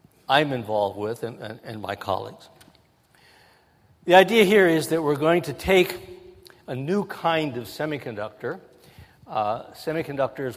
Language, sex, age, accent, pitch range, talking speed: English, male, 60-79, American, 115-155 Hz, 135 wpm